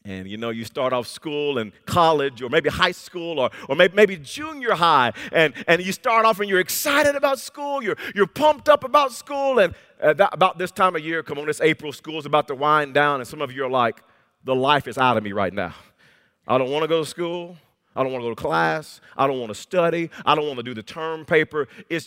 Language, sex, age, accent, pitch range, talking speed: English, male, 40-59, American, 140-185 Hz, 255 wpm